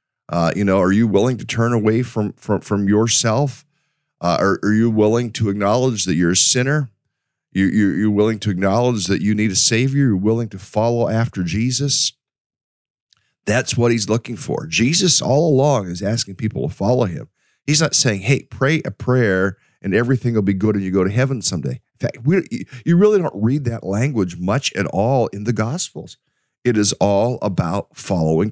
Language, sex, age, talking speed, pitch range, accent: English, male, 50-69, 195 wpm, 95-130 Hz, American